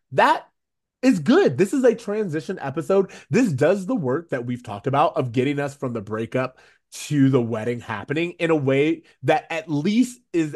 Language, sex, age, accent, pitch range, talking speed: English, male, 20-39, American, 125-185 Hz, 190 wpm